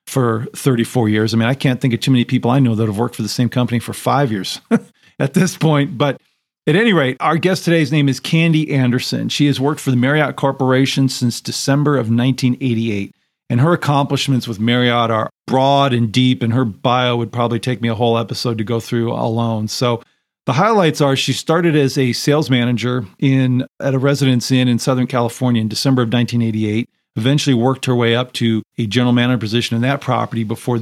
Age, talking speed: 40-59, 210 wpm